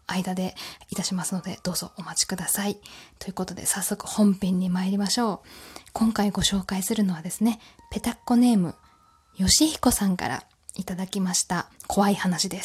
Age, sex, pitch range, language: 20-39, female, 185-250 Hz, Japanese